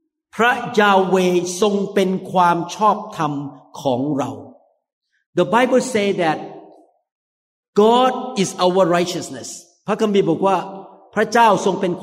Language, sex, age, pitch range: Thai, male, 50-69, 170-220 Hz